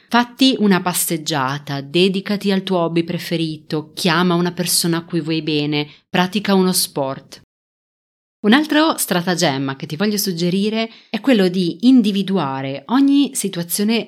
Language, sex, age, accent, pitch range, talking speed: Italian, female, 30-49, native, 155-210 Hz, 130 wpm